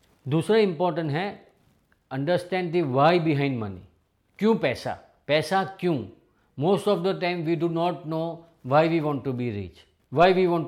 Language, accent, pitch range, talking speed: English, Indian, 135-175 Hz, 165 wpm